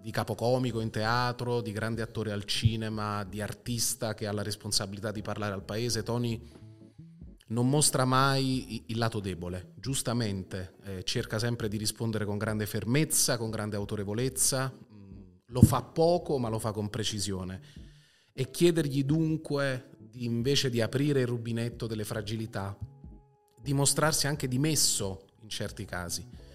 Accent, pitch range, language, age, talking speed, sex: native, 105-130 Hz, Italian, 30-49, 145 wpm, male